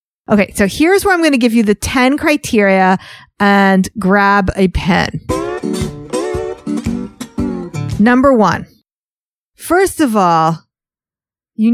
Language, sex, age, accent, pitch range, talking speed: English, female, 40-59, American, 190-270 Hz, 110 wpm